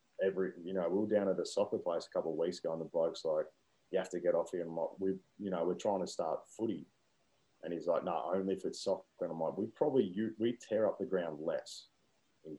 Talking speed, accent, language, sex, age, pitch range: 265 wpm, Australian, English, male, 30-49, 85-105 Hz